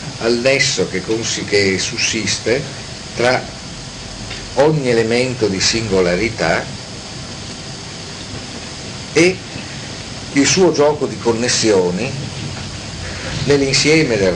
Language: Italian